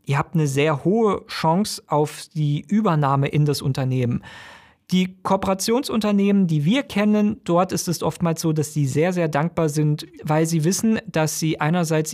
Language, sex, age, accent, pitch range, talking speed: German, male, 40-59, German, 145-190 Hz, 165 wpm